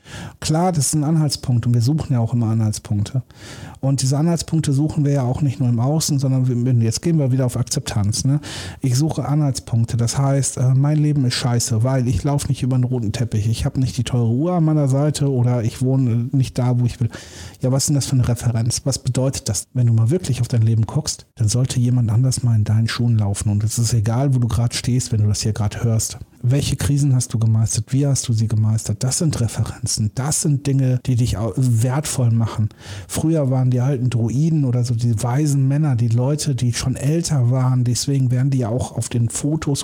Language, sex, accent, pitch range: German, male, German, 115-140 Hz